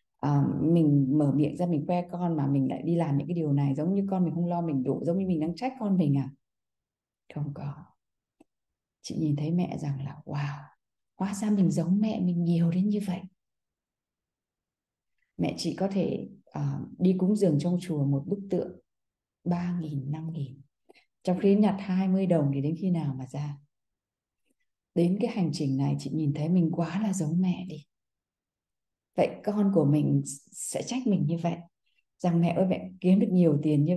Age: 20-39